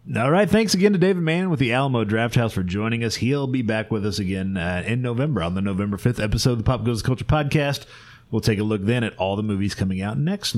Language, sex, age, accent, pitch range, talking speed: English, male, 30-49, American, 105-150 Hz, 265 wpm